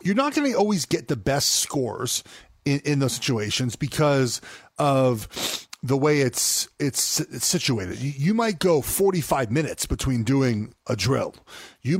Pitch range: 120-170 Hz